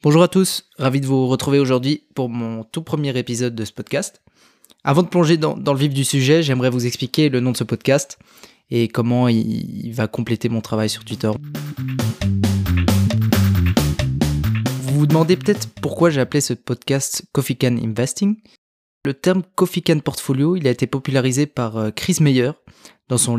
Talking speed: 175 wpm